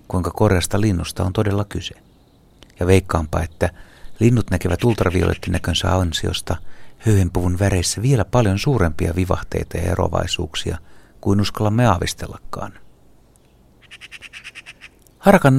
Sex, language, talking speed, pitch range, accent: male, Finnish, 95 wpm, 90-110 Hz, native